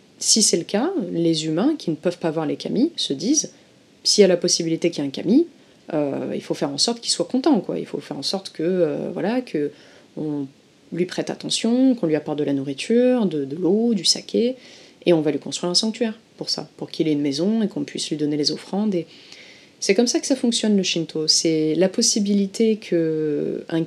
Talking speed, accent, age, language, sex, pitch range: 230 wpm, French, 30-49, French, female, 155-190 Hz